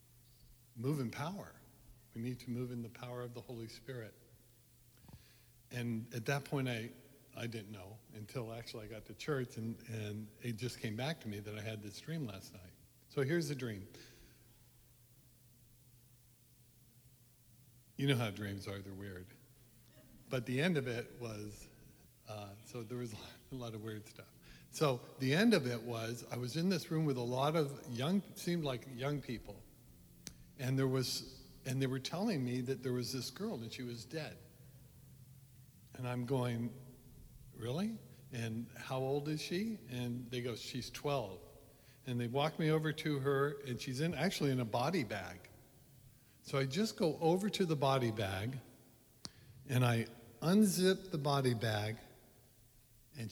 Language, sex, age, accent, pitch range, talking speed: English, male, 60-79, American, 115-135 Hz, 170 wpm